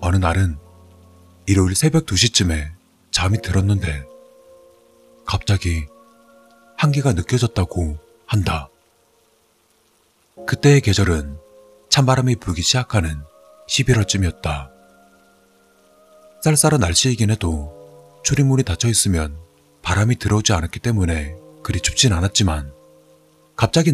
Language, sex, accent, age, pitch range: Korean, male, native, 30-49, 80-115 Hz